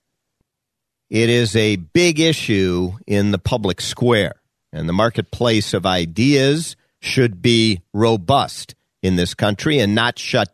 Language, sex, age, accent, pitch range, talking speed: English, male, 50-69, American, 90-120 Hz, 130 wpm